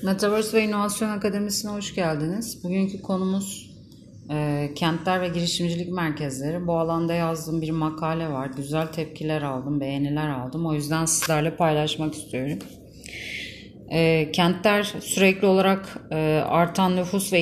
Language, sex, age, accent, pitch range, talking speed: Turkish, female, 30-49, native, 155-185 Hz, 125 wpm